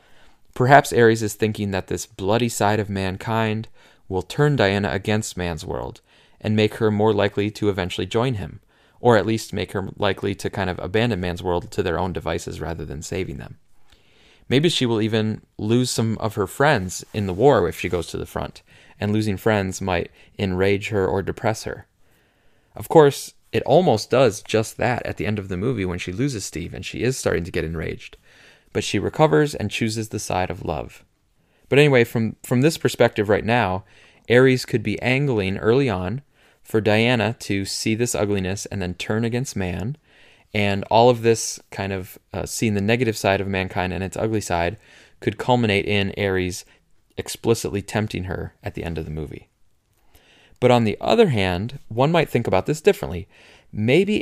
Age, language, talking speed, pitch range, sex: 20-39, English, 190 wpm, 95-115 Hz, male